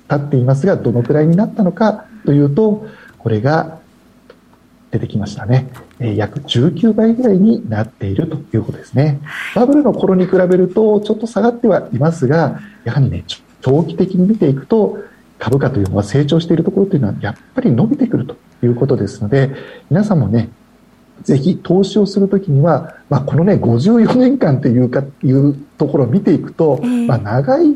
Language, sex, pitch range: Japanese, male, 120-195 Hz